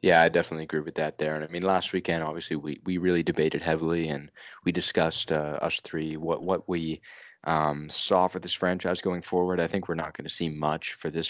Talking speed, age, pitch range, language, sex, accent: 235 wpm, 20-39, 80-90 Hz, English, male, American